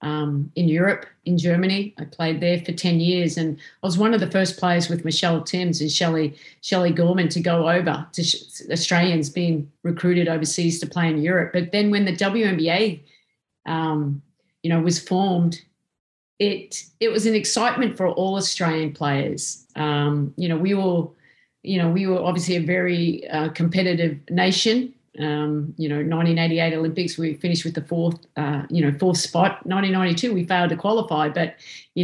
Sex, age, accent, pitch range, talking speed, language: female, 40-59, Australian, 160-185 Hz, 175 wpm, English